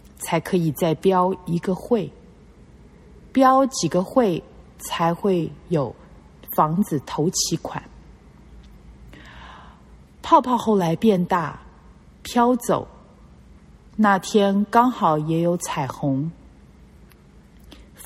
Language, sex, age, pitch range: Chinese, female, 30-49, 140-200 Hz